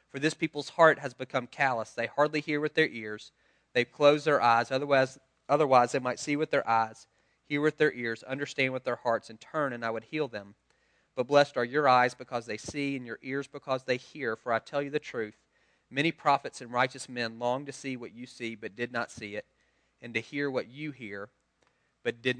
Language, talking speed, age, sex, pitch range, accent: English, 225 wpm, 30-49, male, 120-145 Hz, American